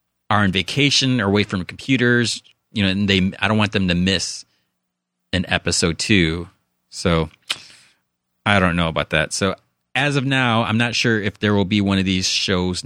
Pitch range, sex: 90-135 Hz, male